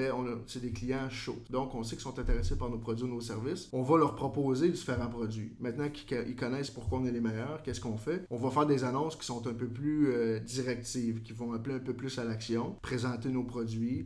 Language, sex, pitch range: French, male, 115-135 Hz